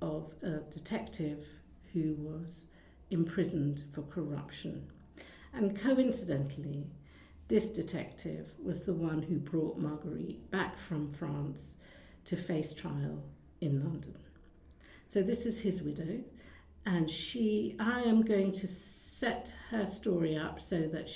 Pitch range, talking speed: 145-180 Hz, 120 wpm